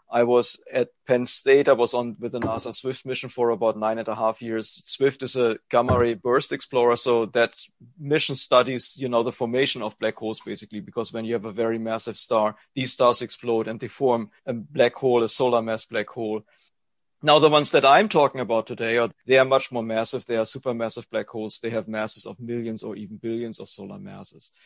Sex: male